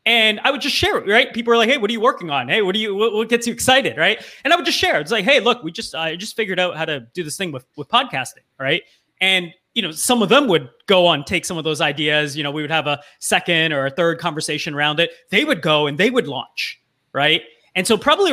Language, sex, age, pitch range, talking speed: English, male, 20-39, 150-210 Hz, 285 wpm